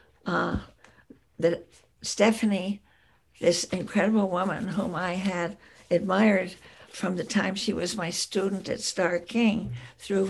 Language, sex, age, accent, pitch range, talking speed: English, female, 60-79, American, 175-200 Hz, 115 wpm